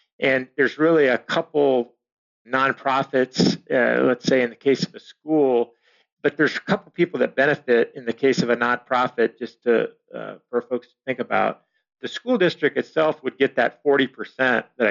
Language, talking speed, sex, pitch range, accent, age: English, 180 wpm, male, 115-145 Hz, American, 50-69